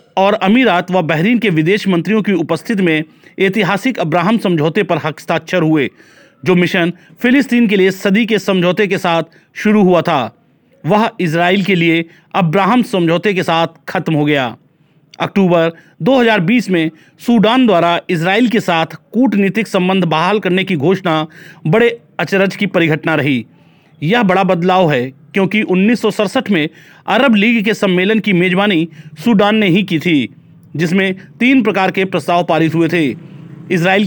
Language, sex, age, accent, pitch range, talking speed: Hindi, male, 40-59, native, 165-205 Hz, 150 wpm